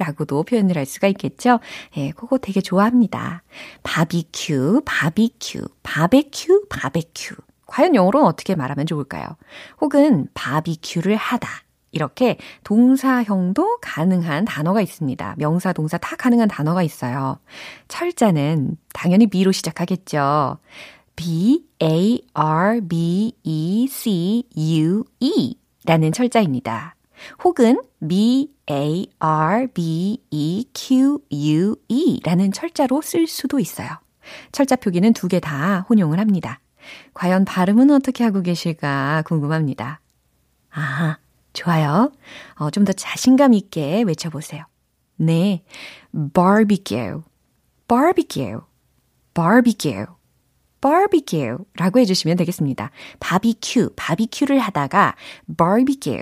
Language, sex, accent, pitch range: Korean, female, native, 160-245 Hz